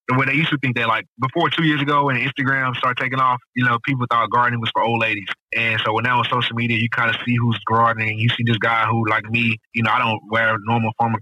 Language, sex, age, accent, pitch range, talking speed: English, male, 20-39, American, 110-115 Hz, 285 wpm